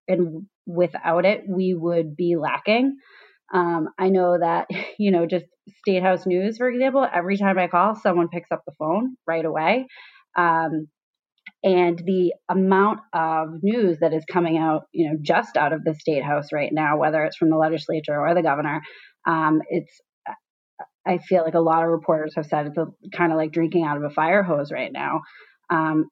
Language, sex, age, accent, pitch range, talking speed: English, female, 30-49, American, 165-195 Hz, 185 wpm